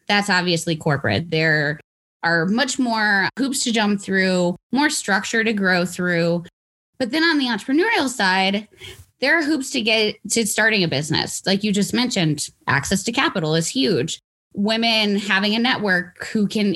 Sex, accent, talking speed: female, American, 165 wpm